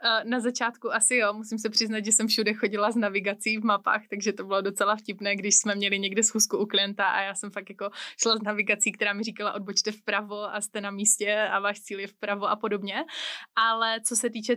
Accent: native